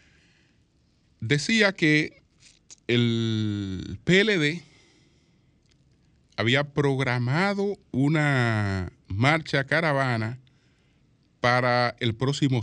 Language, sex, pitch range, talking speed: Spanish, male, 105-150 Hz, 55 wpm